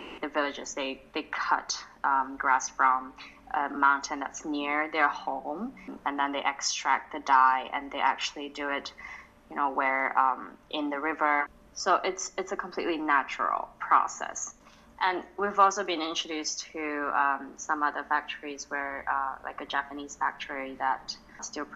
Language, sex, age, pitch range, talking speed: English, female, 20-39, 140-180 Hz, 155 wpm